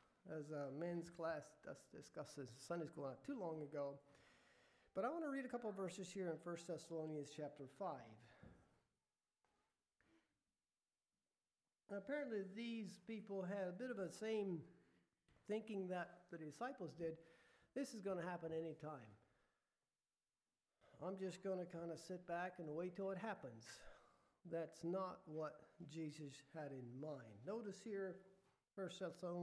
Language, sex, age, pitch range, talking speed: English, male, 50-69, 160-200 Hz, 145 wpm